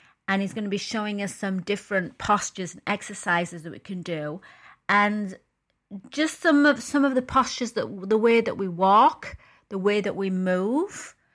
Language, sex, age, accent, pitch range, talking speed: English, female, 30-49, British, 175-210 Hz, 185 wpm